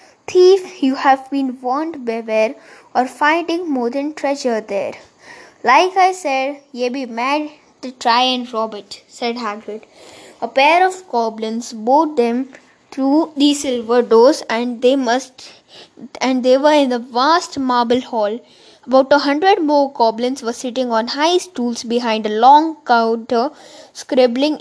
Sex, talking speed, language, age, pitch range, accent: female, 150 wpm, English, 20-39, 235-290 Hz, Indian